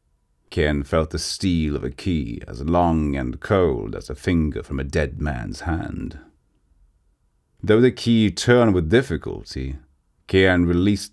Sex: male